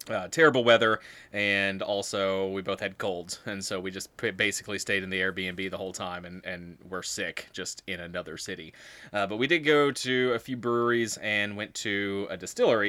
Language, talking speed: English, 200 wpm